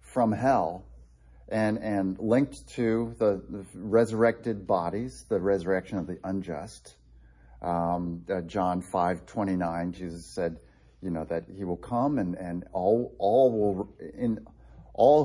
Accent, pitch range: American, 85-110 Hz